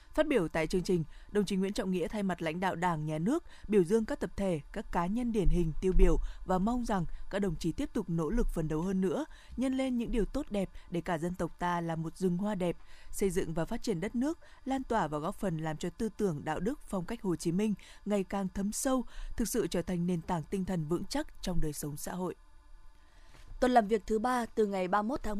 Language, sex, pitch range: Vietnamese, female, 180-230 Hz